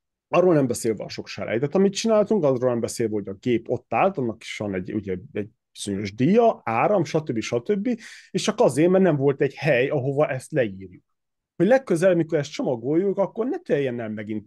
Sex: male